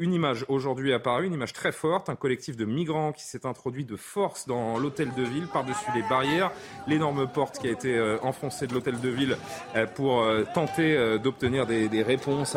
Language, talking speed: French, 185 wpm